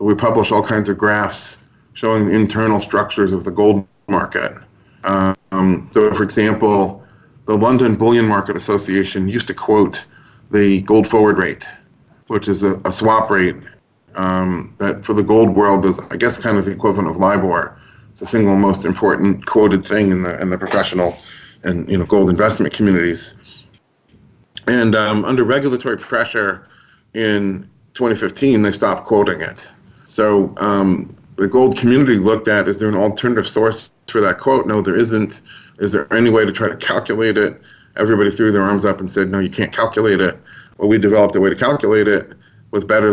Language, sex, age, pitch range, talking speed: English, male, 30-49, 95-110 Hz, 180 wpm